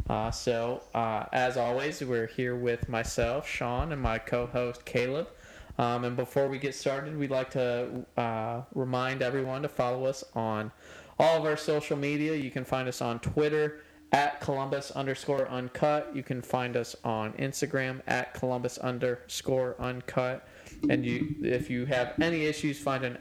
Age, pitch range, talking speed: 20-39, 115-135 Hz, 165 wpm